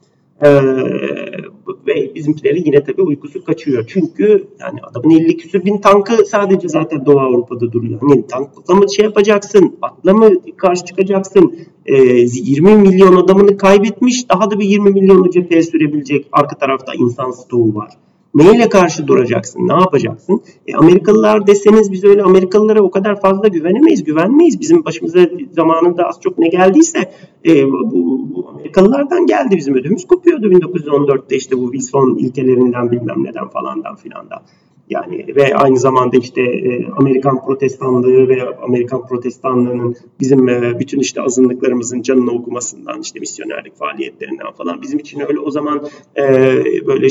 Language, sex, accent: Turkish, male, native